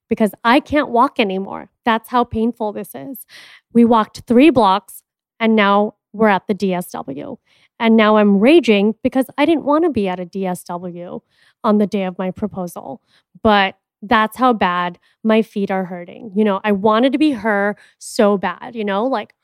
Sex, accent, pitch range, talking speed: female, American, 195-245 Hz, 180 wpm